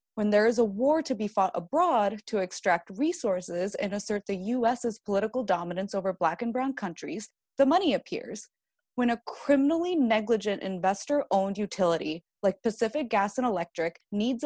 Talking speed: 160 wpm